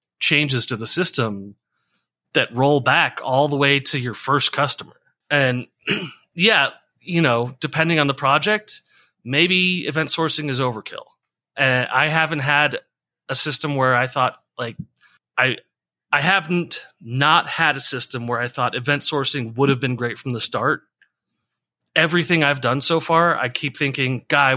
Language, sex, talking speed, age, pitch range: English, male, 160 wpm, 30-49, 120-155 Hz